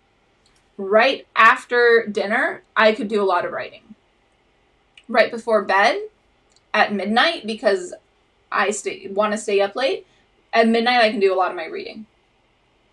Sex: female